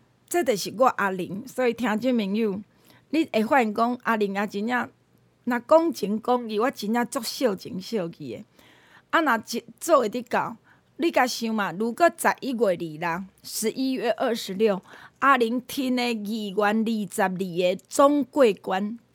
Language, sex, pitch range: Chinese, female, 215-295 Hz